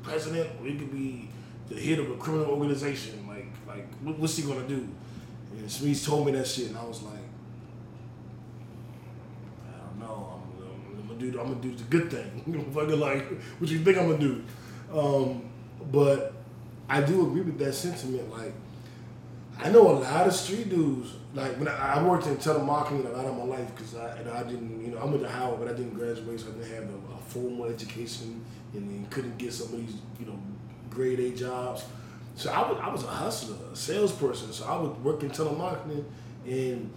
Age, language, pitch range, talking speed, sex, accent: 20-39, English, 120-155 Hz, 205 wpm, male, American